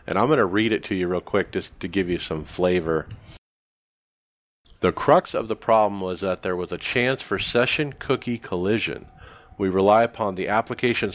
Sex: male